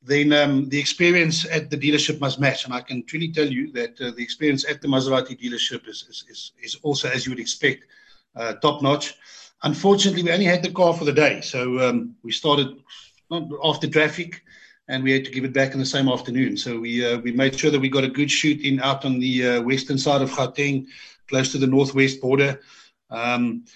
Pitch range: 125-160 Hz